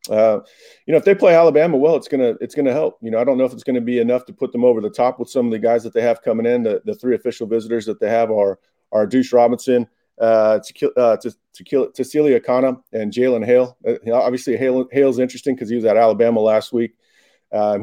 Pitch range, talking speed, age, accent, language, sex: 115-140 Hz, 240 wpm, 40-59, American, English, male